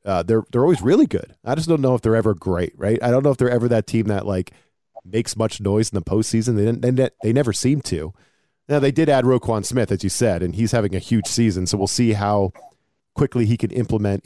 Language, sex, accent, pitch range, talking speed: English, male, American, 105-130 Hz, 260 wpm